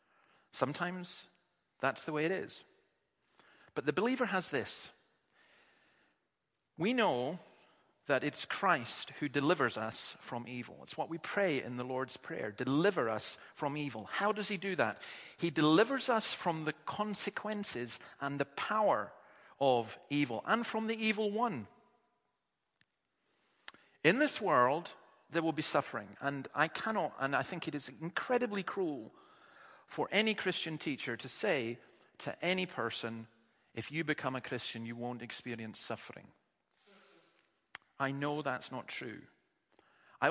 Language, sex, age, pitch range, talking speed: English, male, 40-59, 120-175 Hz, 140 wpm